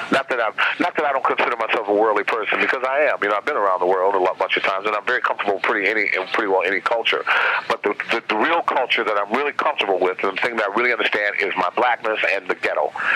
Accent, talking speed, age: American, 265 wpm, 50-69